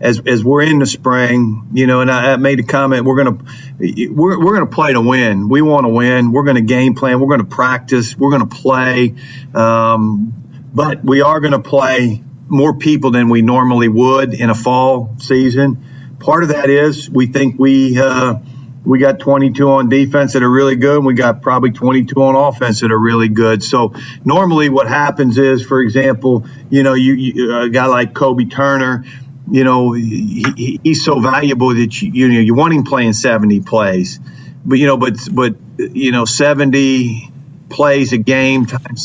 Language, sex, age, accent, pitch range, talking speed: English, male, 50-69, American, 125-140 Hz, 195 wpm